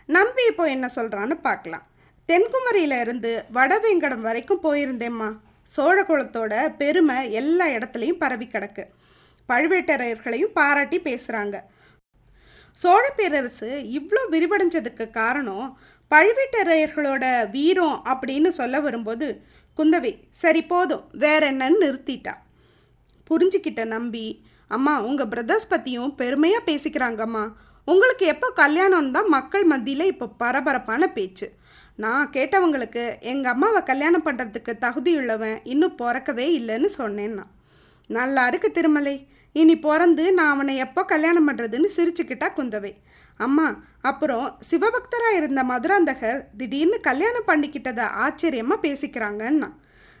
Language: Tamil